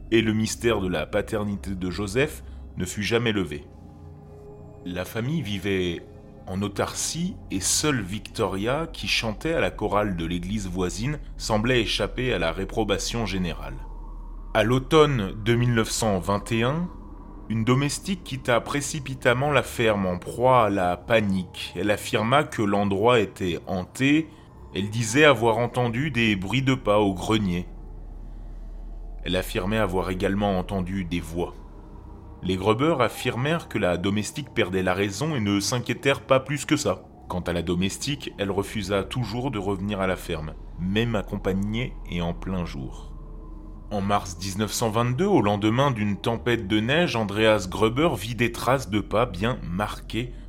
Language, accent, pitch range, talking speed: English, French, 90-120 Hz, 145 wpm